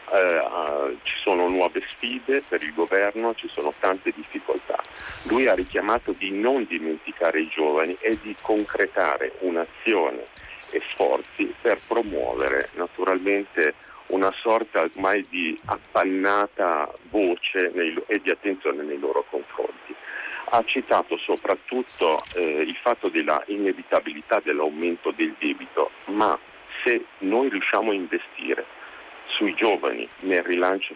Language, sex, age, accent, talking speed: Italian, male, 50-69, native, 120 wpm